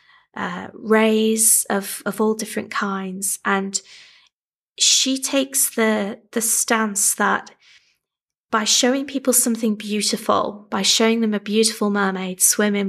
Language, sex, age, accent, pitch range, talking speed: English, female, 20-39, British, 190-220 Hz, 120 wpm